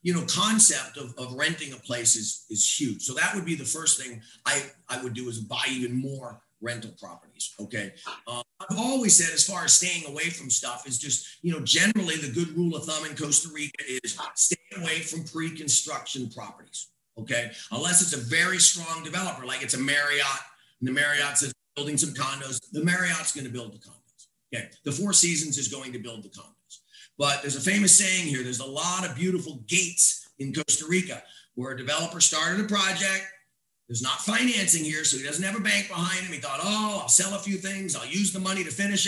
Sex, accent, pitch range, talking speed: male, American, 135-180 Hz, 215 wpm